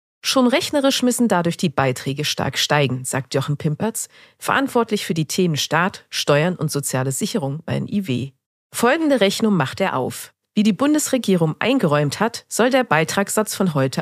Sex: female